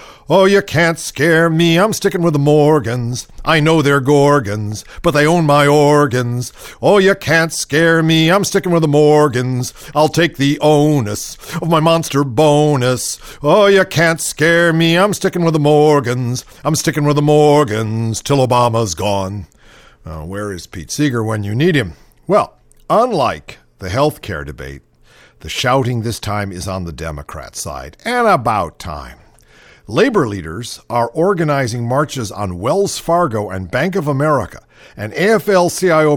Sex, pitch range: male, 115-165 Hz